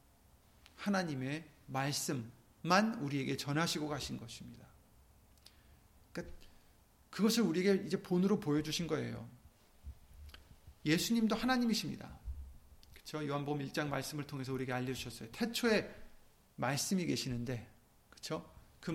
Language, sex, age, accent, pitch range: Korean, male, 40-59, native, 120-175 Hz